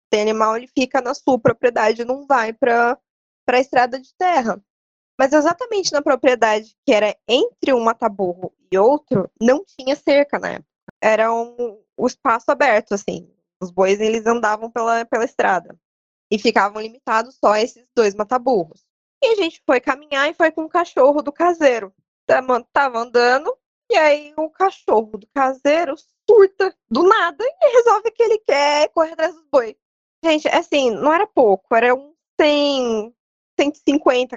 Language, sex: Portuguese, female